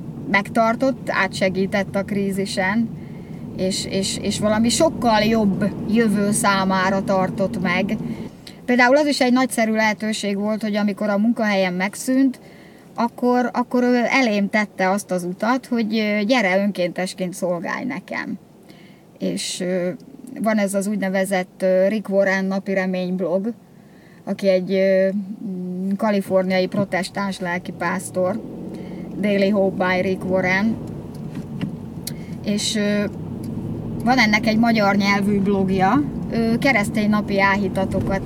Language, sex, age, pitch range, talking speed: Hungarian, female, 30-49, 190-215 Hz, 105 wpm